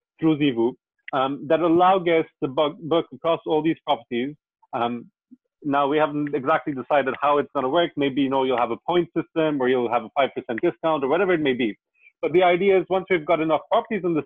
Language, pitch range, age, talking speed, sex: English, 130-160 Hz, 30-49, 225 wpm, male